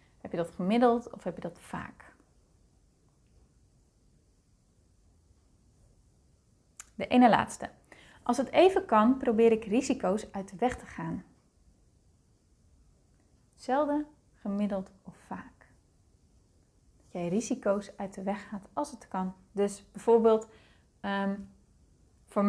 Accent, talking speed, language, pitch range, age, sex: Dutch, 110 wpm, Dutch, 185-240 Hz, 30-49, female